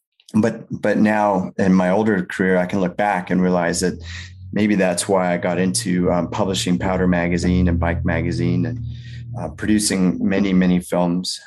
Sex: male